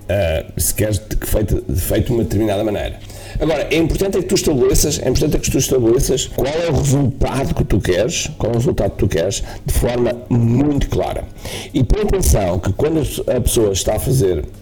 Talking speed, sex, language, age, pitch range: 200 wpm, male, Portuguese, 50-69, 100-125 Hz